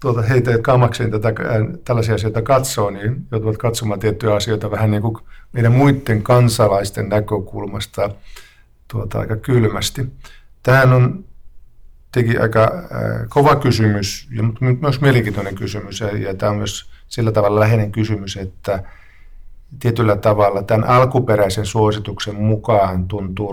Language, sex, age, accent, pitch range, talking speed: Finnish, male, 50-69, native, 100-115 Hz, 120 wpm